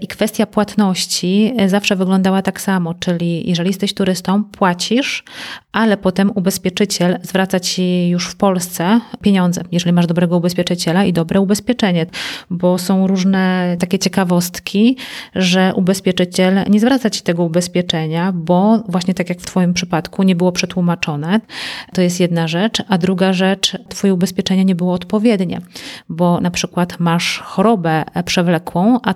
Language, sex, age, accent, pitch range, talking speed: Polish, female, 30-49, native, 175-200 Hz, 140 wpm